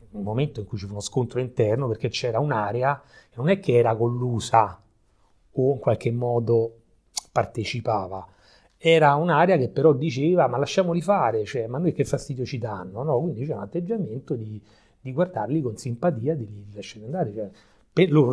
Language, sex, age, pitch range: Italian, male, 30-49, 105-140 Hz